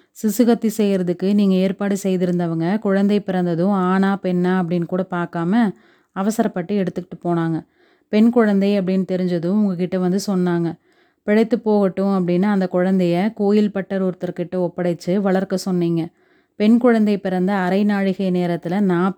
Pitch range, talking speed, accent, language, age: 180-205 Hz, 120 wpm, native, Tamil, 30-49